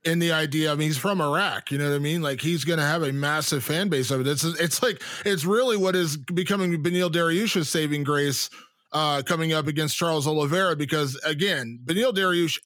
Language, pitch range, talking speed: English, 150-190 Hz, 215 wpm